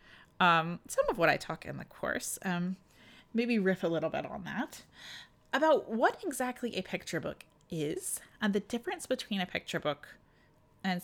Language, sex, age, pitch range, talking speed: English, female, 30-49, 180-265 Hz, 175 wpm